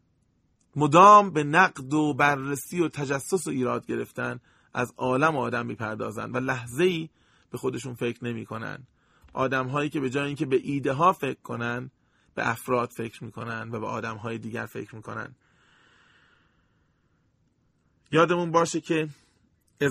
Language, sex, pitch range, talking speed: English, male, 120-155 Hz, 150 wpm